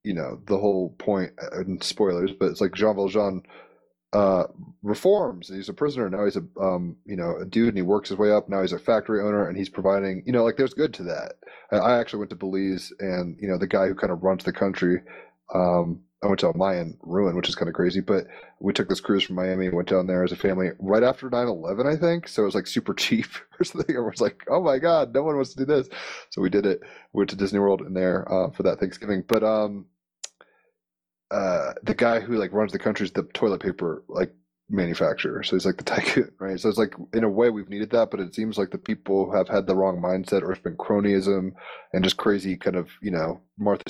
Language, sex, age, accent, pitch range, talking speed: English, male, 30-49, American, 95-110 Hz, 250 wpm